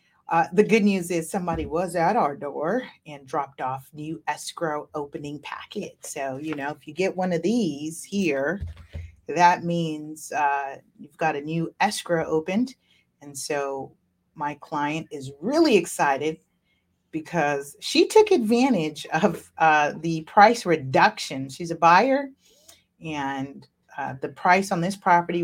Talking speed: 145 wpm